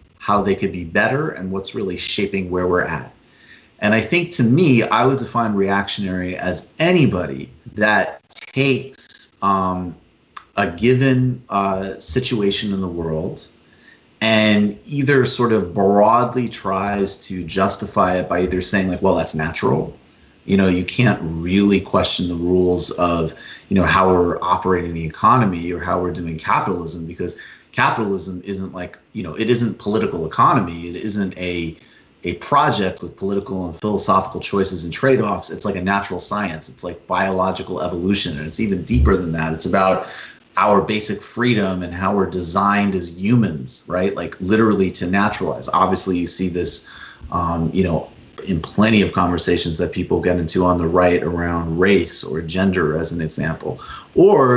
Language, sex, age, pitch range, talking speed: English, male, 30-49, 90-100 Hz, 165 wpm